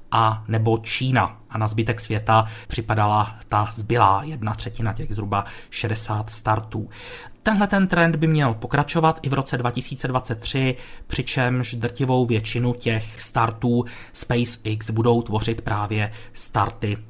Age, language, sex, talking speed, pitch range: 30-49, Czech, male, 125 wpm, 115-150 Hz